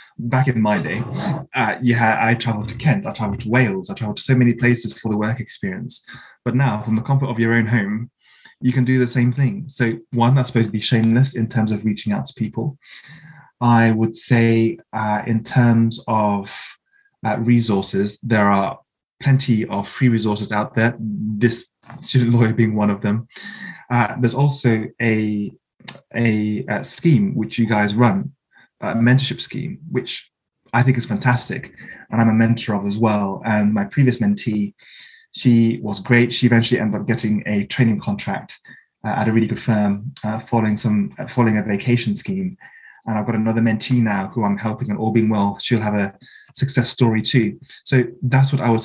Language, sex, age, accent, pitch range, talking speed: English, male, 20-39, British, 110-125 Hz, 185 wpm